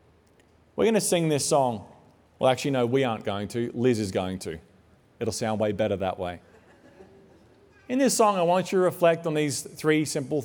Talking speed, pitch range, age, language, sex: 195 wpm, 130-185 Hz, 30-49, English, male